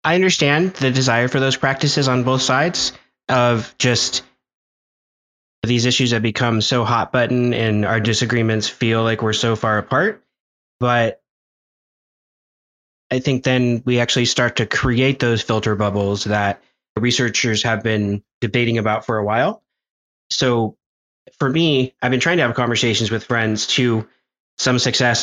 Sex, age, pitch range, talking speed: male, 20-39, 110-125 Hz, 150 wpm